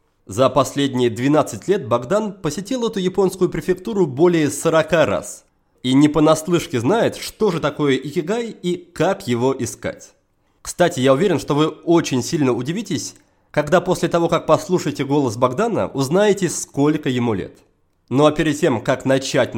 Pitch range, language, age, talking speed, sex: 135-185 Hz, Russian, 20-39, 150 wpm, male